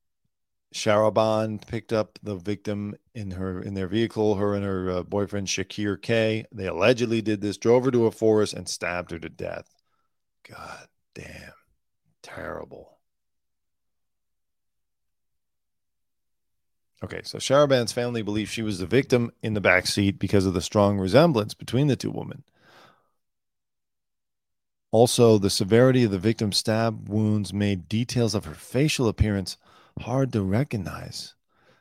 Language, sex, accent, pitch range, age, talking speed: English, male, American, 95-115 Hz, 40-59, 140 wpm